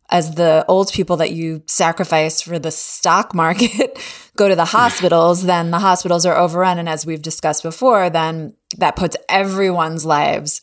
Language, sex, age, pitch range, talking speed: English, female, 20-39, 170-210 Hz, 170 wpm